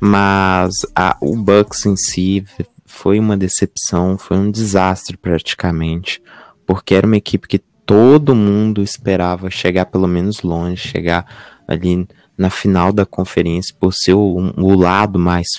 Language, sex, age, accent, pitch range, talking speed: Portuguese, male, 20-39, Brazilian, 90-105 Hz, 140 wpm